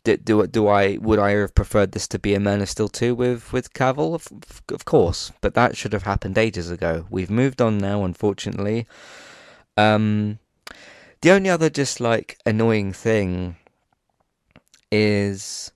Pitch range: 95-120 Hz